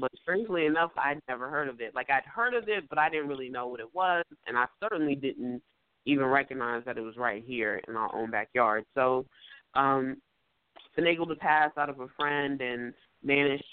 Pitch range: 125-150 Hz